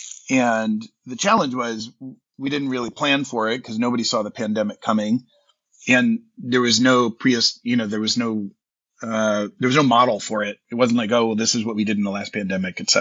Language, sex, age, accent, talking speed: English, male, 30-49, American, 220 wpm